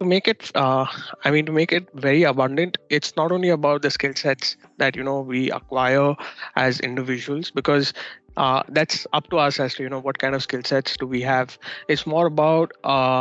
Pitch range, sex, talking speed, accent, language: 130-155 Hz, male, 210 wpm, Indian, English